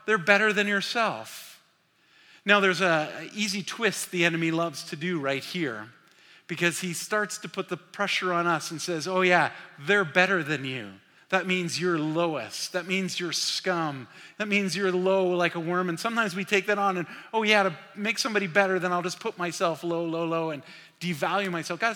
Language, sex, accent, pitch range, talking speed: English, male, American, 170-210 Hz, 200 wpm